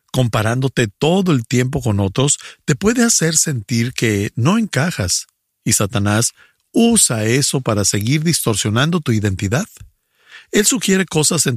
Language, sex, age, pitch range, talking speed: English, male, 50-69, 105-150 Hz, 135 wpm